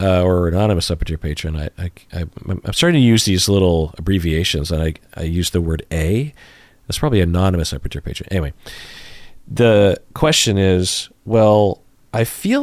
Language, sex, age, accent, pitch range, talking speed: English, male, 40-59, American, 85-115 Hz, 160 wpm